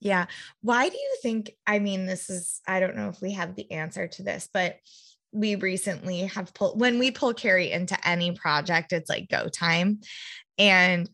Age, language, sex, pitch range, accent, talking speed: 20-39, English, female, 175-210 Hz, American, 195 wpm